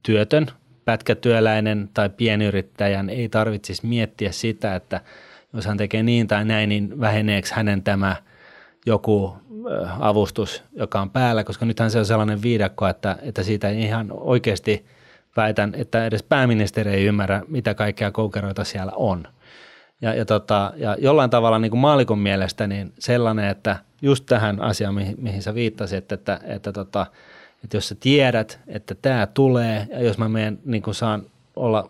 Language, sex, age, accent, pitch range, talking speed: Finnish, male, 30-49, native, 105-120 Hz, 160 wpm